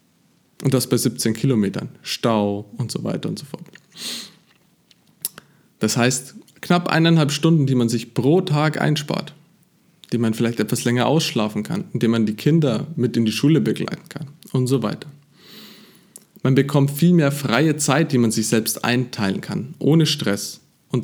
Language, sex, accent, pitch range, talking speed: German, male, German, 115-160 Hz, 165 wpm